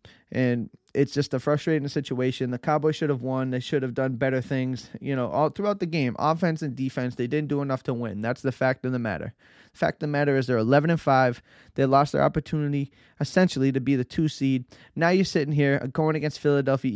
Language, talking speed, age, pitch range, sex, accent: English, 225 wpm, 20-39, 130-150 Hz, male, American